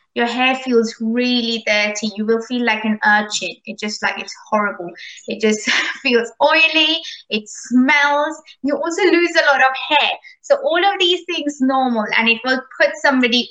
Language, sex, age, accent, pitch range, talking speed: English, female, 20-39, Indian, 220-270 Hz, 180 wpm